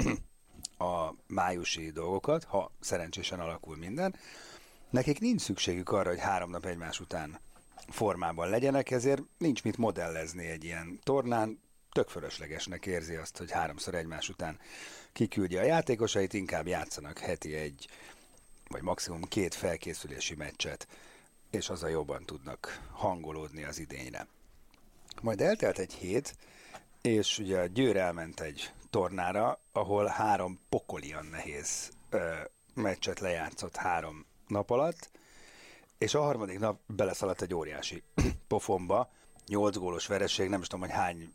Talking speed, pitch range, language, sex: 130 wpm, 85-115 Hz, Hungarian, male